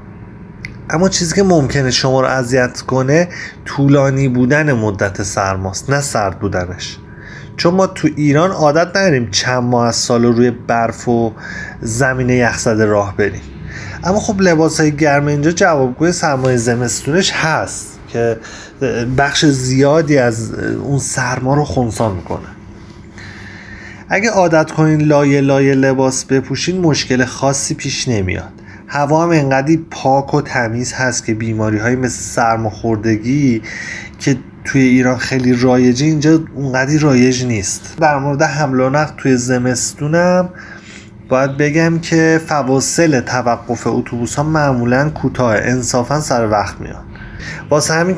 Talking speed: 130 wpm